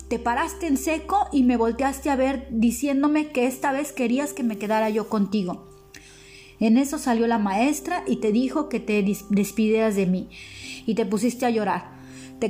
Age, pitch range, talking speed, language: 30-49, 200-260 Hz, 180 wpm, Italian